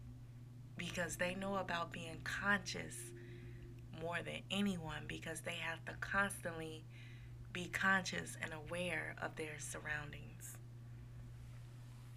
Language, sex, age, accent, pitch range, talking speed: English, female, 20-39, American, 120-160 Hz, 105 wpm